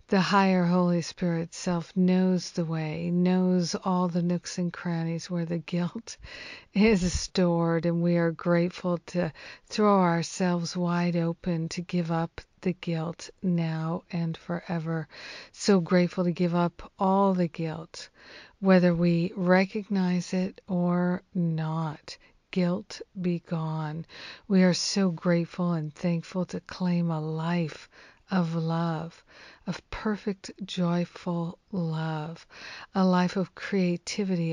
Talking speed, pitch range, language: 125 wpm, 170-185 Hz, English